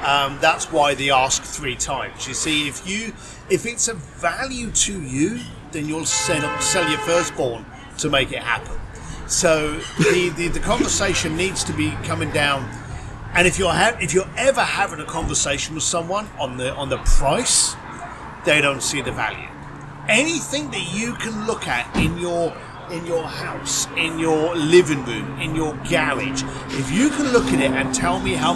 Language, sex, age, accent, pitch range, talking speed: English, male, 40-59, British, 135-190 Hz, 185 wpm